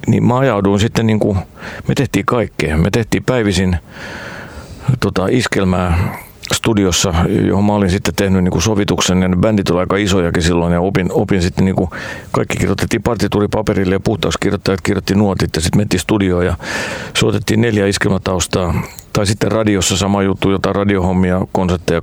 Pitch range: 90-105 Hz